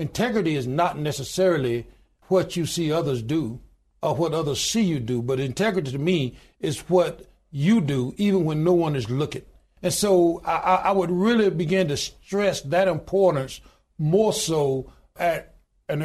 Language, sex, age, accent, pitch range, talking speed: English, male, 60-79, American, 145-185 Hz, 165 wpm